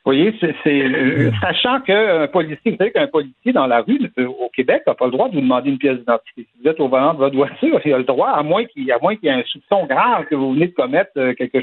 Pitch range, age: 140-215 Hz, 60-79